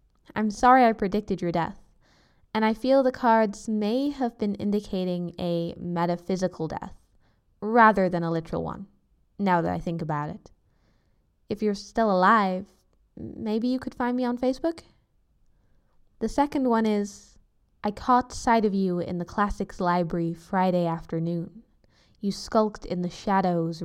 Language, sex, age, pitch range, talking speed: English, female, 10-29, 170-210 Hz, 150 wpm